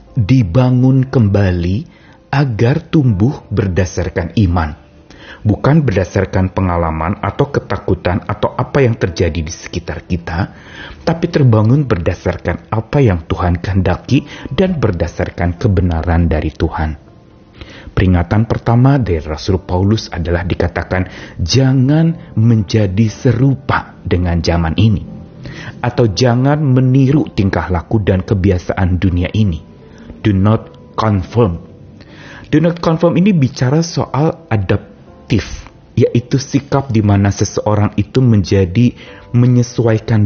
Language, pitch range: Indonesian, 90-120 Hz